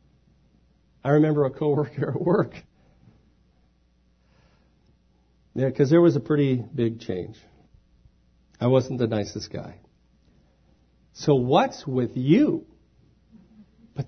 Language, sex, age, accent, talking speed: English, male, 50-69, American, 100 wpm